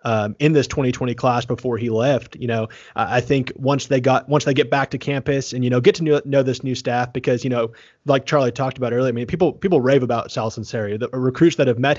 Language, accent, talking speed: English, American, 260 wpm